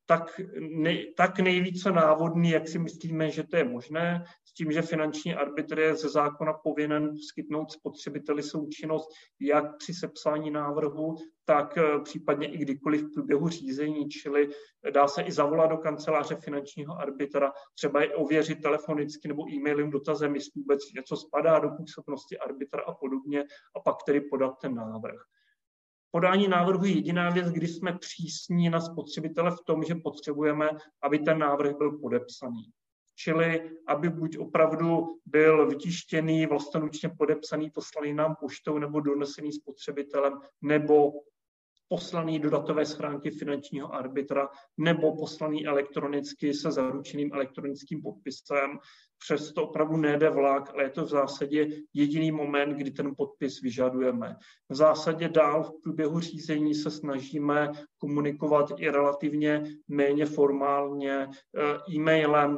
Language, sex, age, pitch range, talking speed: Czech, male, 30-49, 145-160 Hz, 135 wpm